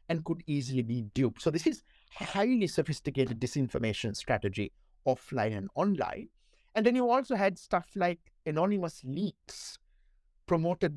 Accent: Indian